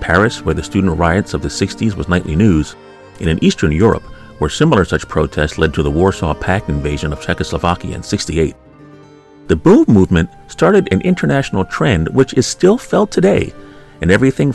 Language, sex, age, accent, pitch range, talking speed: English, male, 40-59, American, 80-100 Hz, 175 wpm